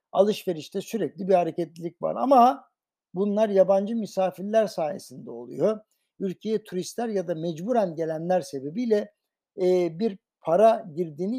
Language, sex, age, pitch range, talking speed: Turkish, male, 60-79, 160-200 Hz, 115 wpm